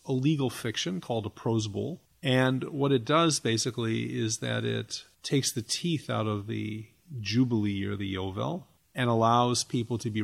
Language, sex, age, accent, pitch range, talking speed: English, male, 40-59, American, 110-145 Hz, 175 wpm